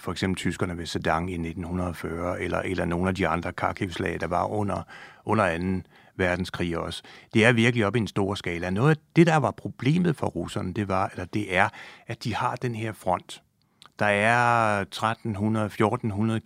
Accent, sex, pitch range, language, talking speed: native, male, 95-145 Hz, Danish, 185 wpm